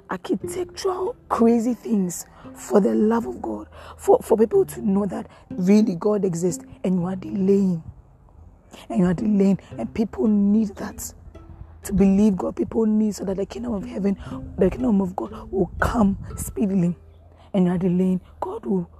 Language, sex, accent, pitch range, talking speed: English, female, Nigerian, 175-215 Hz, 165 wpm